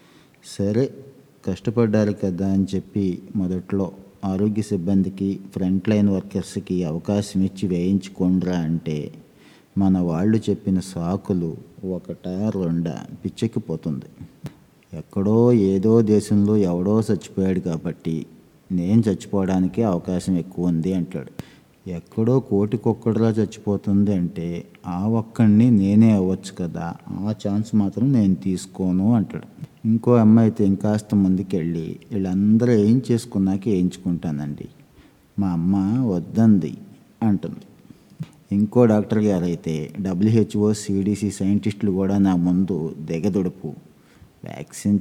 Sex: male